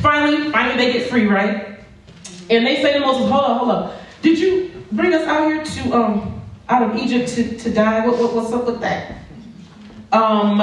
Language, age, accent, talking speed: English, 40-59, American, 205 wpm